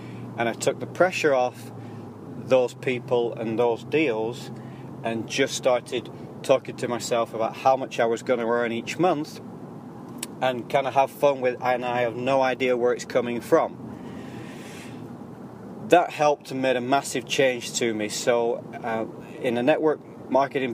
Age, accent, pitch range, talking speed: 30-49, British, 115-135 Hz, 160 wpm